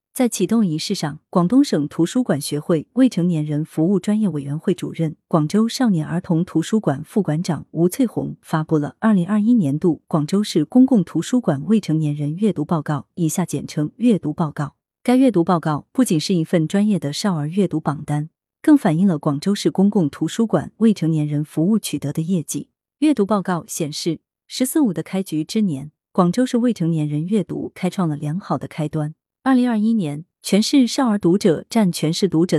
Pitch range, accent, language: 155-215 Hz, native, Chinese